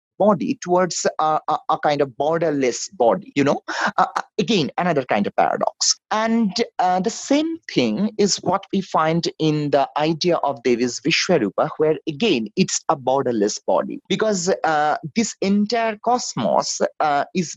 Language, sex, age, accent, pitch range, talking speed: English, male, 30-49, Indian, 155-215 Hz, 155 wpm